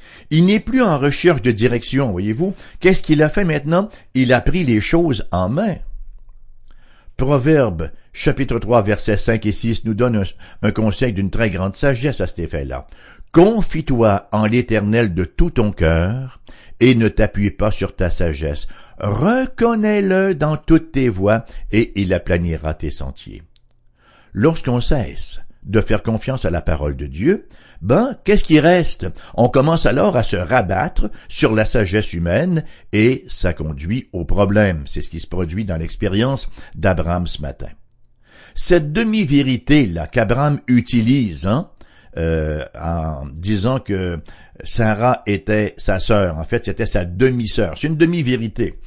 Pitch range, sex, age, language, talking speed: 90-140 Hz, male, 60-79, English, 150 wpm